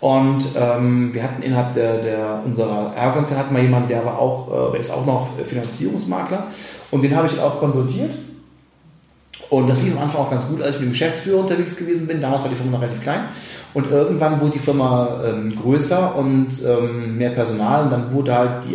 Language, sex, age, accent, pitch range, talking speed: German, male, 30-49, German, 120-150 Hz, 210 wpm